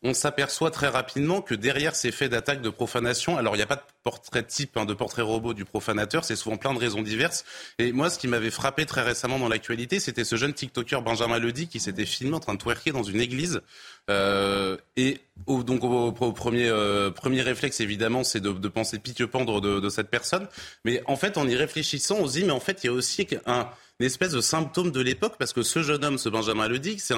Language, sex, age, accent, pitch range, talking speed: French, male, 30-49, French, 115-140 Hz, 240 wpm